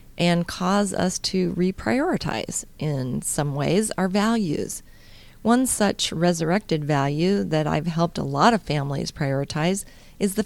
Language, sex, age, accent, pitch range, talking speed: English, female, 40-59, American, 150-190 Hz, 140 wpm